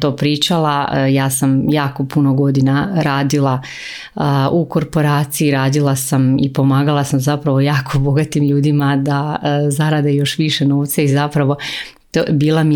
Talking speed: 130 wpm